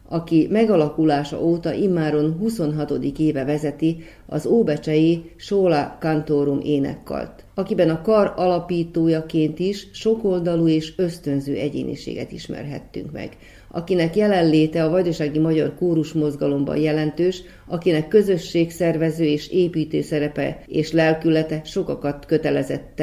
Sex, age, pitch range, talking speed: female, 40-59, 145-170 Hz, 105 wpm